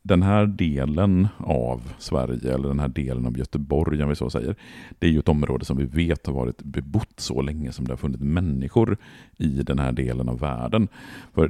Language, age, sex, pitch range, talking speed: Swedish, 50-69, male, 65-85 Hz, 210 wpm